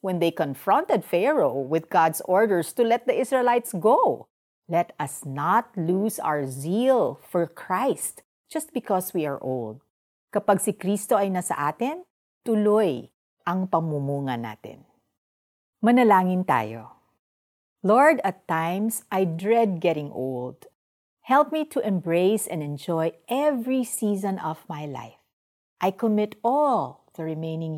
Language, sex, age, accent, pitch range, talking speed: Filipino, female, 50-69, native, 145-220 Hz, 130 wpm